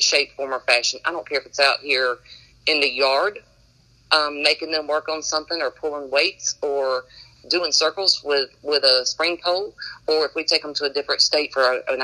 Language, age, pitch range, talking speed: English, 40-59, 130-155 Hz, 210 wpm